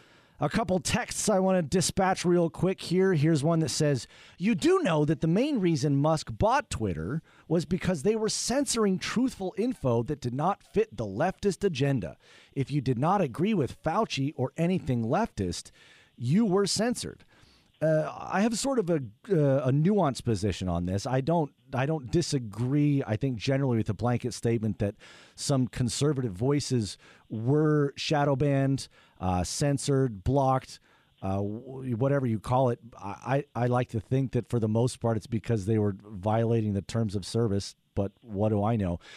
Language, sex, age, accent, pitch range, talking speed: English, male, 40-59, American, 120-170 Hz, 175 wpm